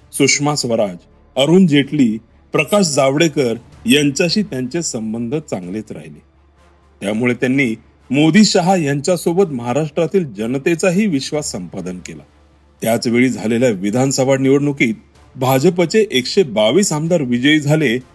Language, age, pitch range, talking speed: Marathi, 40-59, 115-170 Hz, 100 wpm